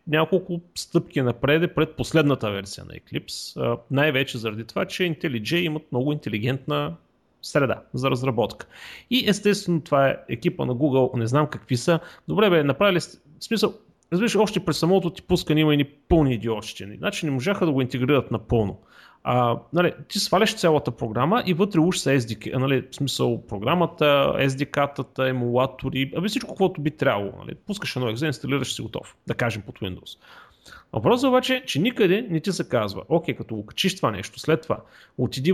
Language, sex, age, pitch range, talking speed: Bulgarian, male, 30-49, 125-170 Hz, 170 wpm